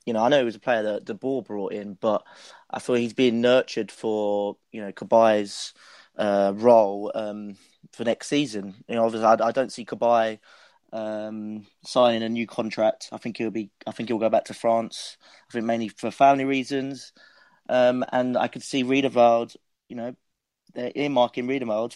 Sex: male